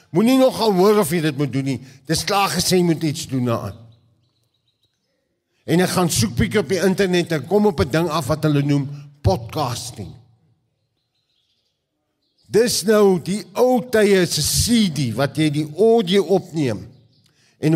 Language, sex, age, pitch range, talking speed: English, male, 50-69, 130-175 Hz, 160 wpm